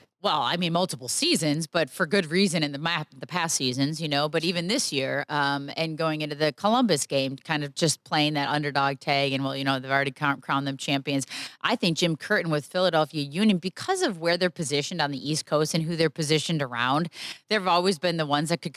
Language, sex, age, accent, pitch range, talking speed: English, female, 20-39, American, 145-175 Hz, 225 wpm